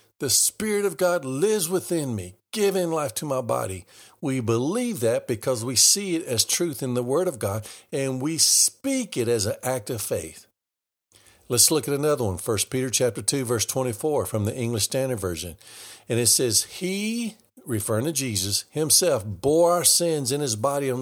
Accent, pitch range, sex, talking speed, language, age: American, 115-155 Hz, male, 185 wpm, English, 50-69